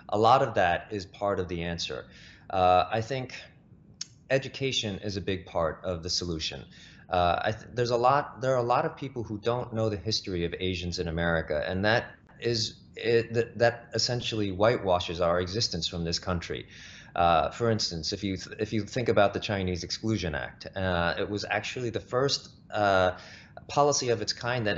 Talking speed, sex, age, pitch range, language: 195 wpm, male, 30-49, 95-115 Hz, English